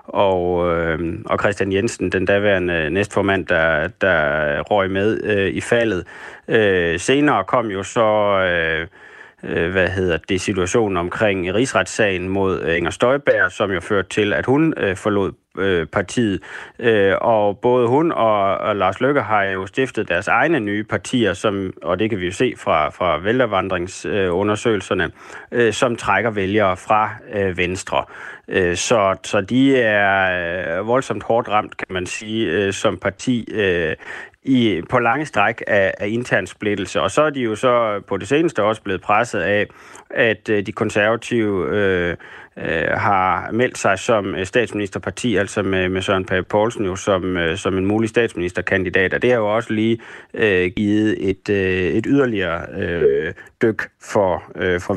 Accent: native